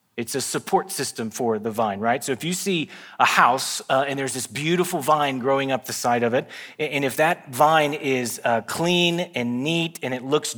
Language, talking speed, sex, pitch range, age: English, 215 wpm, male, 130-150 Hz, 30-49